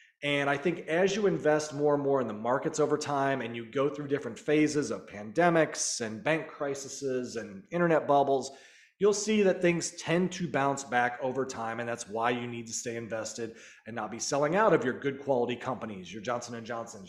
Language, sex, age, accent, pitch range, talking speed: English, male, 30-49, American, 130-175 Hz, 210 wpm